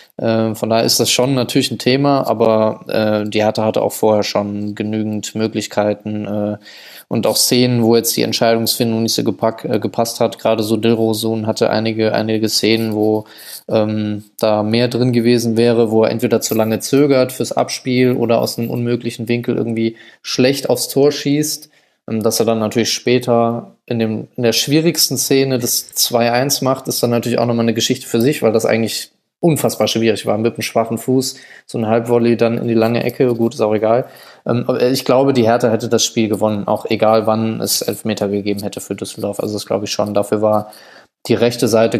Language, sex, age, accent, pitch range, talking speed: German, male, 20-39, German, 110-120 Hz, 195 wpm